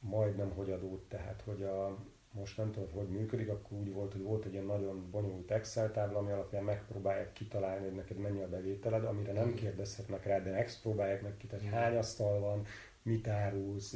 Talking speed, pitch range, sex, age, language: 180 wpm, 100-115 Hz, male, 40-59, Hungarian